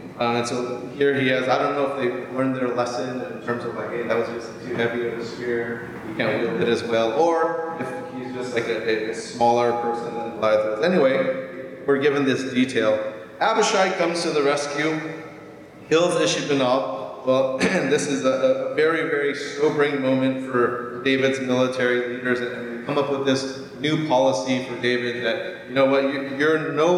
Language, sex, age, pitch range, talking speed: English, male, 30-49, 125-155 Hz, 190 wpm